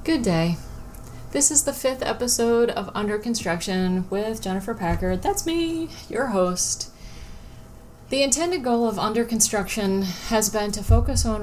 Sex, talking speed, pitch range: female, 145 wpm, 165-205 Hz